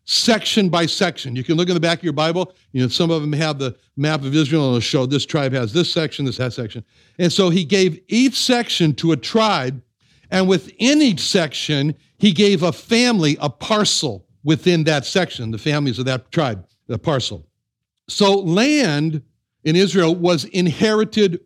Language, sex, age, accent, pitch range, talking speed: English, male, 60-79, American, 145-195 Hz, 195 wpm